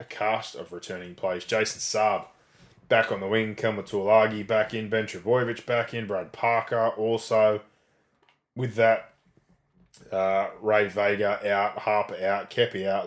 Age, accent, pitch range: 20-39, Australian, 95-110 Hz